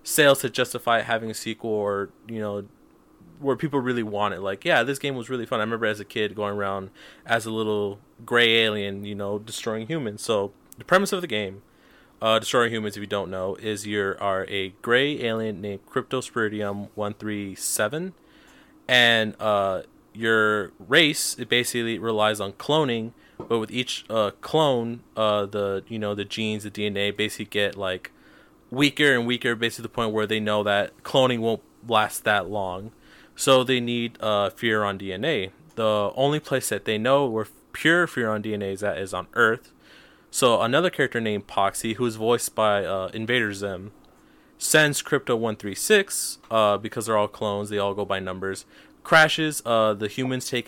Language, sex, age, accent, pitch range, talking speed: English, male, 20-39, American, 105-120 Hz, 180 wpm